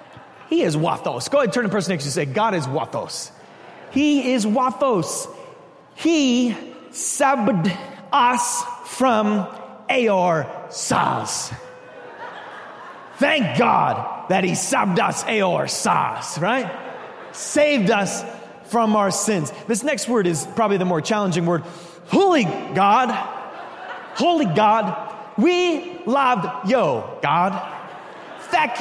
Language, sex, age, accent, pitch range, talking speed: English, male, 30-49, American, 180-275 Hz, 120 wpm